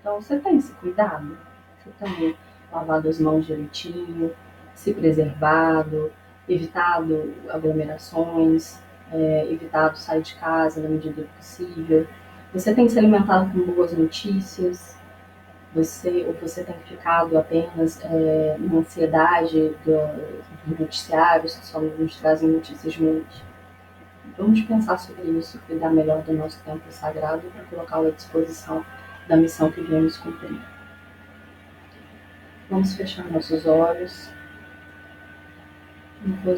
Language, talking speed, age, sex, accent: Portuguese, 125 wpm, 20-39, female, Brazilian